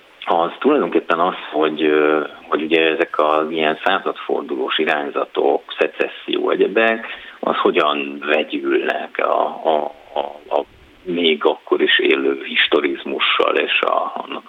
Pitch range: 310-430 Hz